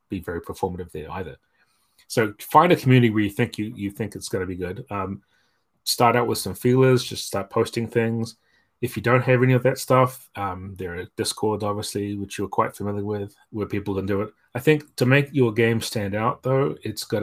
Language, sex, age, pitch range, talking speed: English, male, 30-49, 95-115 Hz, 225 wpm